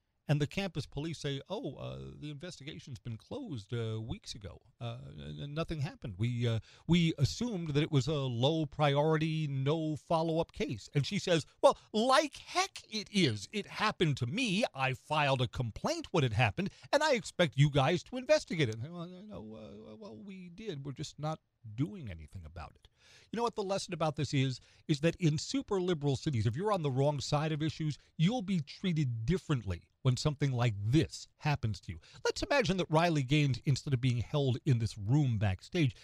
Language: English